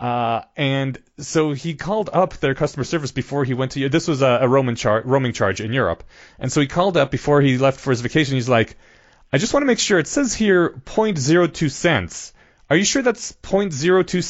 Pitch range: 130-170 Hz